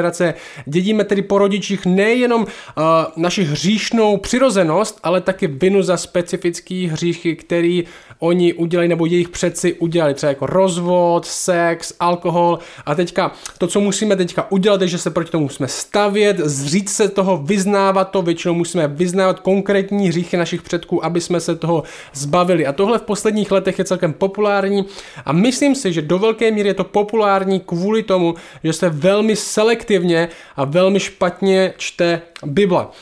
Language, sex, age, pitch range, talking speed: Czech, male, 20-39, 170-195 Hz, 160 wpm